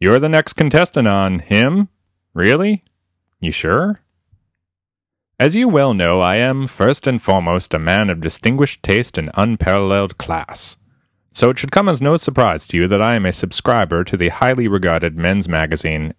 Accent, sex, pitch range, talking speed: American, male, 90-115 Hz, 170 wpm